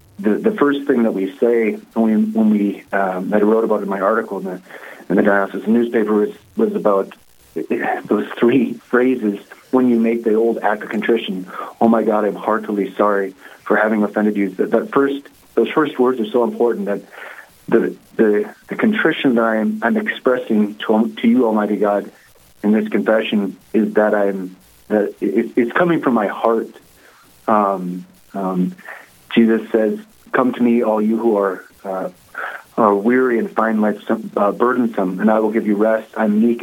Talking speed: 185 wpm